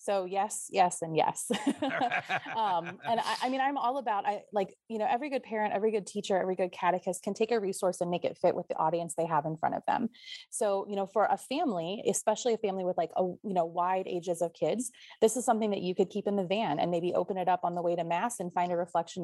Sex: female